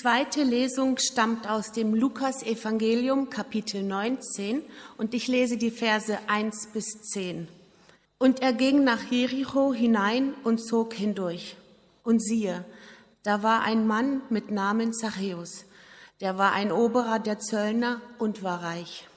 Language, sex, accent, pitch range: German, female, German, 190-240 Hz